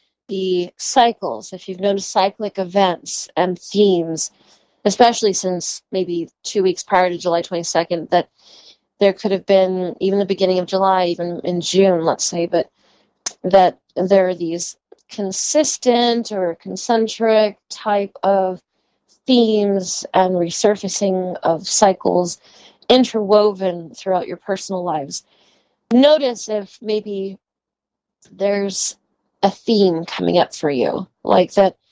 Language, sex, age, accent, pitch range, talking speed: English, female, 30-49, American, 180-210 Hz, 120 wpm